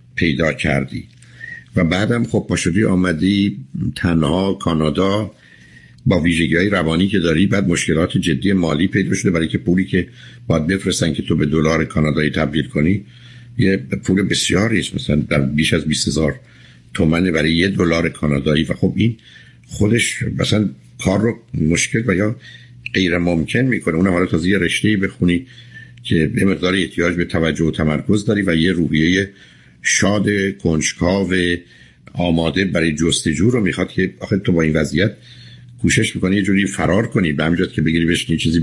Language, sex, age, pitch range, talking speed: Persian, male, 60-79, 85-110 Hz, 160 wpm